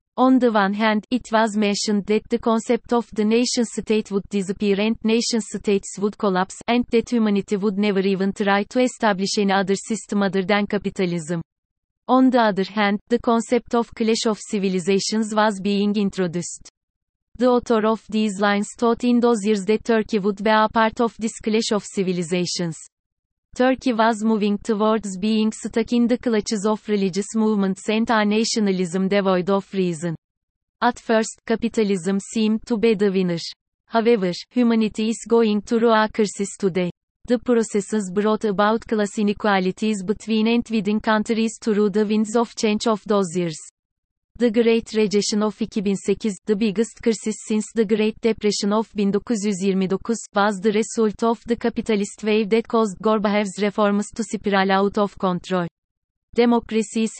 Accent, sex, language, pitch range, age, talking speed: native, female, Turkish, 200-230 Hz, 30-49, 155 wpm